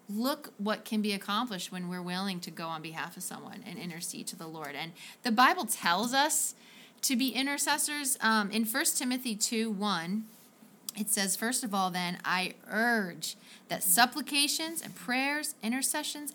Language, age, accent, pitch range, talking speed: English, 30-49, American, 195-245 Hz, 170 wpm